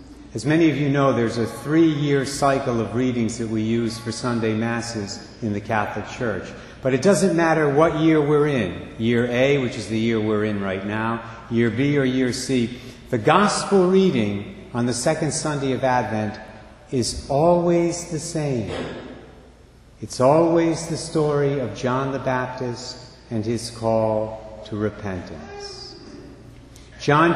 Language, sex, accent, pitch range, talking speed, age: English, male, American, 110-150 Hz, 155 wpm, 60-79